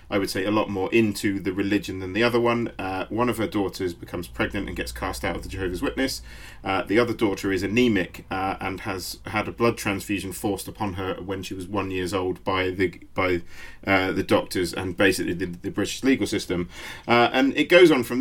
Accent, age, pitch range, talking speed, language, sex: British, 40-59, 100-120 Hz, 225 wpm, English, male